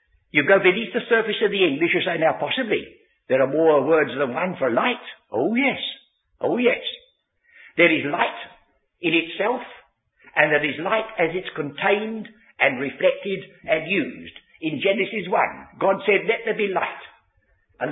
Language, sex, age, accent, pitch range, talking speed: English, male, 60-79, British, 165-280 Hz, 165 wpm